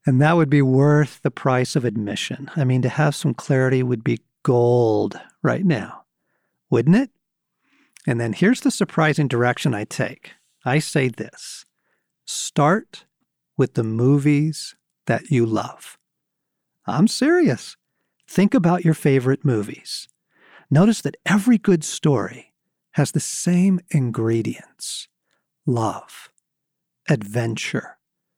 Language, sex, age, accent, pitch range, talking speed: English, male, 50-69, American, 130-170 Hz, 125 wpm